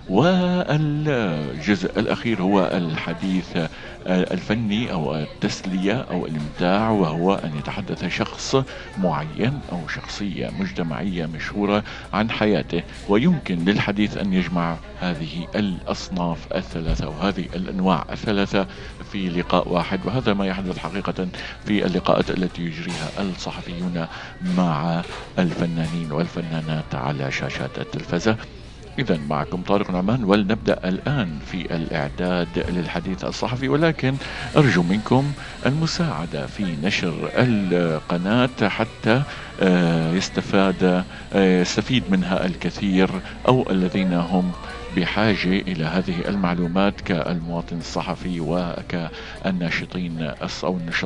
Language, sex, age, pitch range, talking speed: Arabic, male, 50-69, 85-110 Hz, 95 wpm